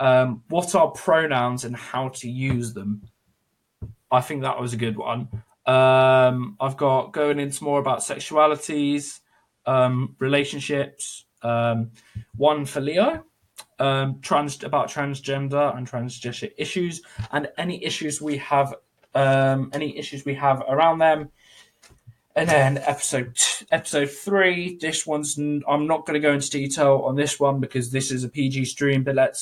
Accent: British